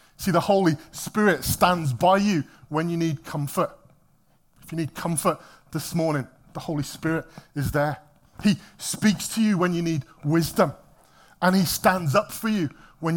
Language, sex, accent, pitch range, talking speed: English, male, British, 155-195 Hz, 170 wpm